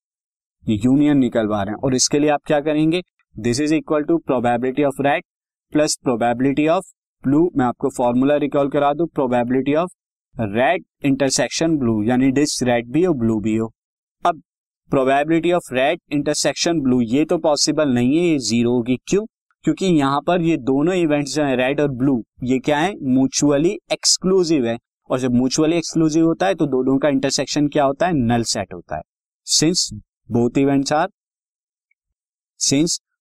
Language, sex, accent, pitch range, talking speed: Hindi, male, native, 125-155 Hz, 155 wpm